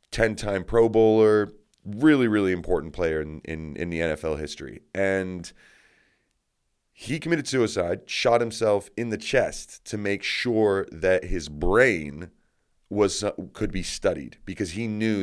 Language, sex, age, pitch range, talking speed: English, male, 30-49, 85-110 Hz, 140 wpm